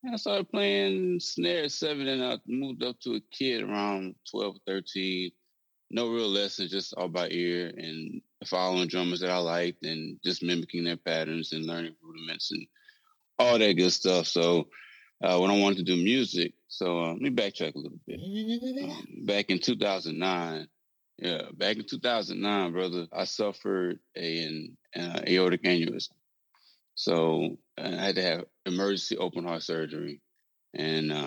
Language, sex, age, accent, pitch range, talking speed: English, male, 20-39, American, 85-100 Hz, 165 wpm